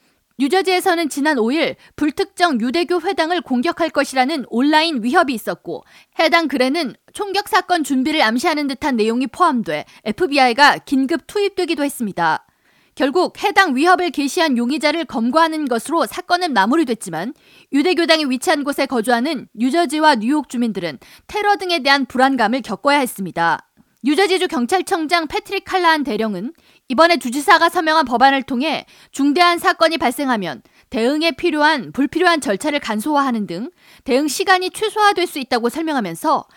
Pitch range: 250-345 Hz